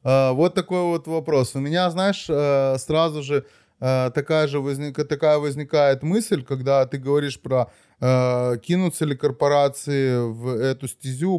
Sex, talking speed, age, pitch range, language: male, 130 wpm, 20-39, 130-155 Hz, Russian